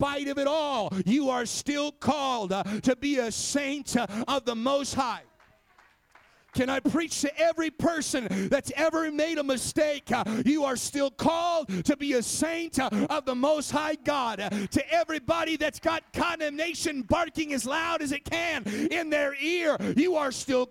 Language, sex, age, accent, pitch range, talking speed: English, male, 40-59, American, 250-330 Hz, 175 wpm